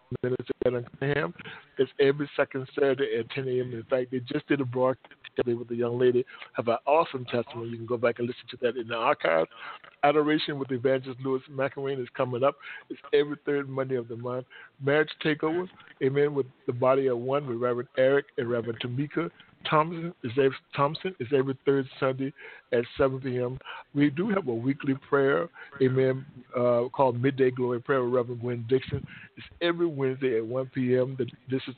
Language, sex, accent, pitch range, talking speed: English, male, American, 125-140 Hz, 185 wpm